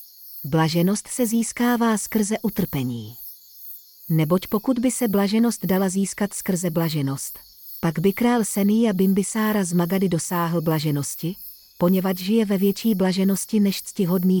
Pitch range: 165-215 Hz